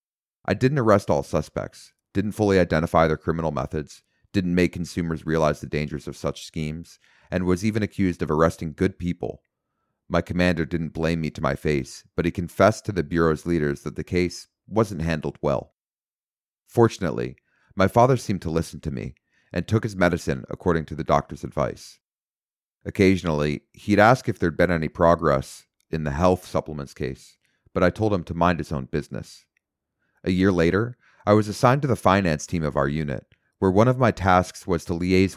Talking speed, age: 185 wpm, 30-49